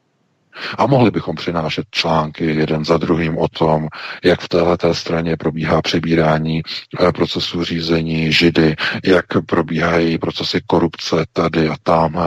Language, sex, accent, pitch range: Czech, male, native, 80-90 Hz